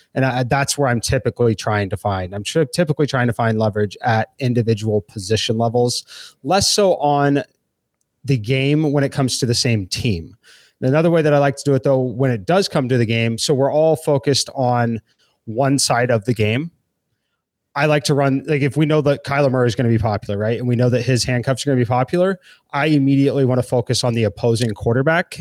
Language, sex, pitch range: English, male, 120-145 Hz